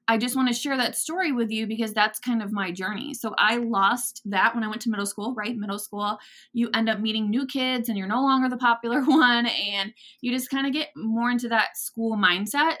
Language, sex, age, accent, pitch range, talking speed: English, female, 20-39, American, 205-255 Hz, 245 wpm